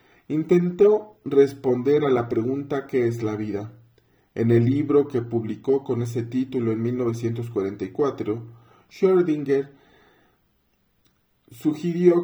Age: 40-59